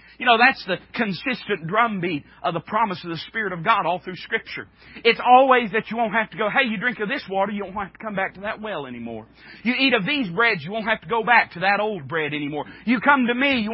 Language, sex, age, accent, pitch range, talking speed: English, male, 40-59, American, 185-260 Hz, 270 wpm